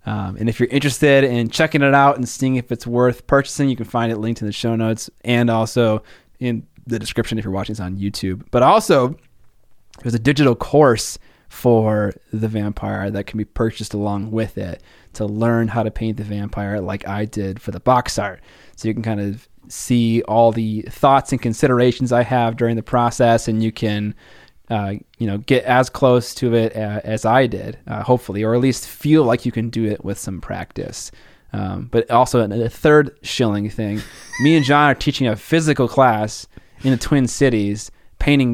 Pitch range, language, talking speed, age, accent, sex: 105-125 Hz, English, 200 wpm, 20-39, American, male